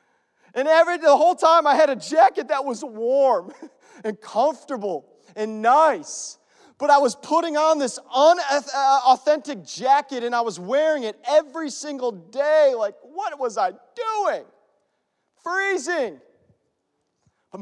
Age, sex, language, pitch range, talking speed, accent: 30-49, male, English, 195-290 Hz, 140 wpm, American